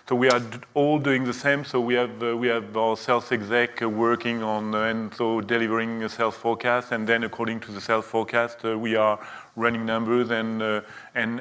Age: 30-49